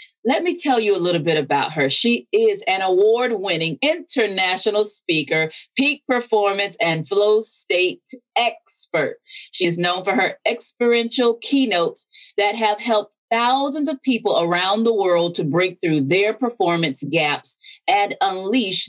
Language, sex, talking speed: English, female, 145 wpm